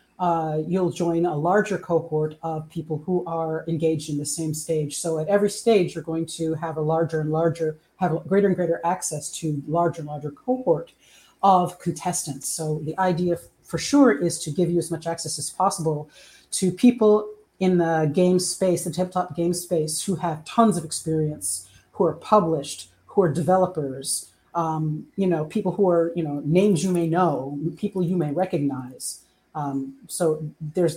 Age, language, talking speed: 30-49, English, 180 wpm